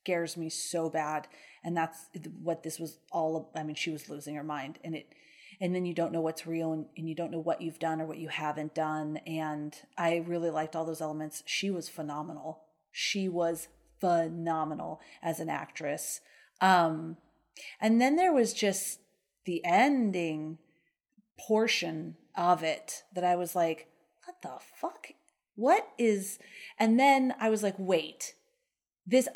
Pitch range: 165-220 Hz